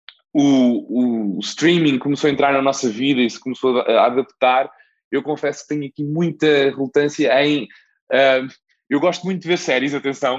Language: Portuguese